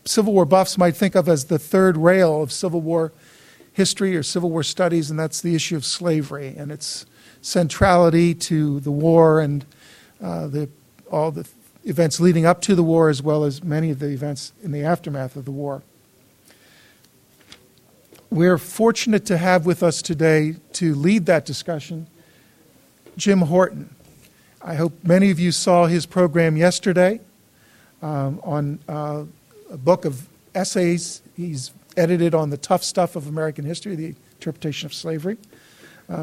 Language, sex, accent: English, male, American